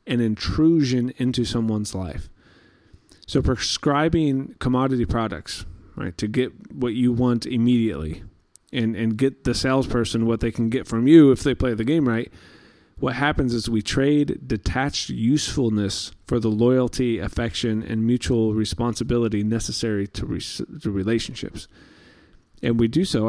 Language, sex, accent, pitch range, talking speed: English, male, American, 110-130 Hz, 140 wpm